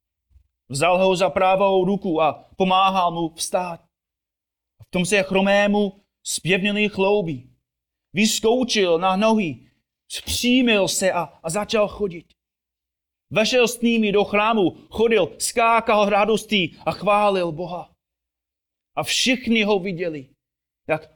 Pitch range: 140-210 Hz